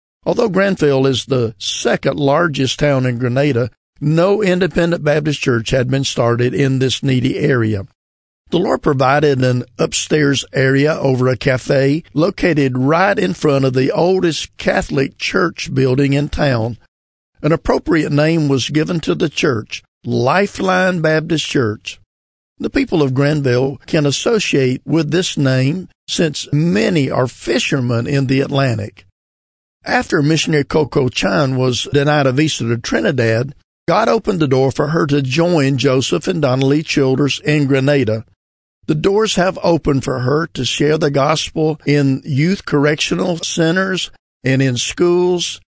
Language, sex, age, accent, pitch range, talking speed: English, male, 50-69, American, 125-160 Hz, 145 wpm